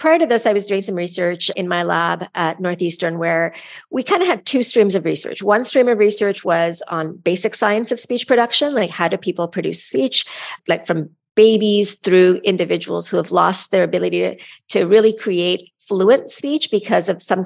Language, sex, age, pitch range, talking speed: English, female, 40-59, 175-225 Hz, 200 wpm